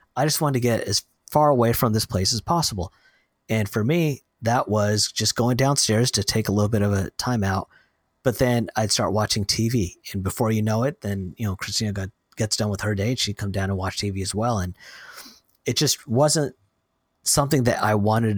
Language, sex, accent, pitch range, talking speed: English, male, American, 100-125 Hz, 220 wpm